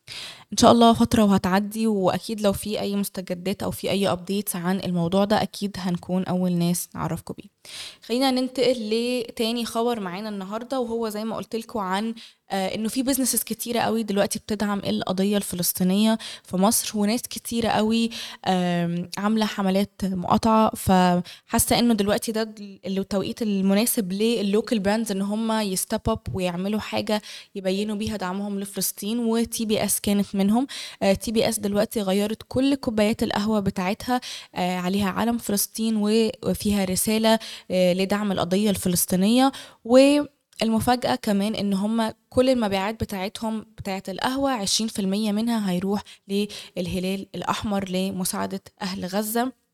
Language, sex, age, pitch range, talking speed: Arabic, female, 20-39, 190-225 Hz, 130 wpm